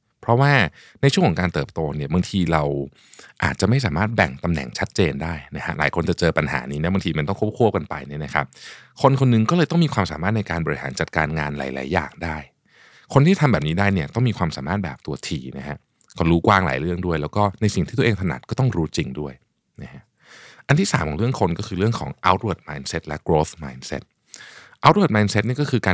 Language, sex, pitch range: Thai, male, 80-115 Hz